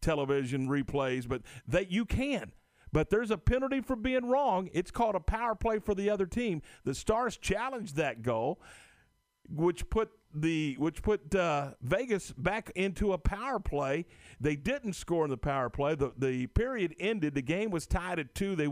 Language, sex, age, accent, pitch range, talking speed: English, male, 50-69, American, 125-195 Hz, 185 wpm